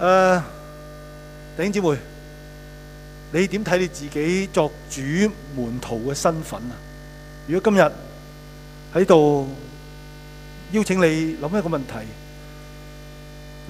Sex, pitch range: male, 150-180 Hz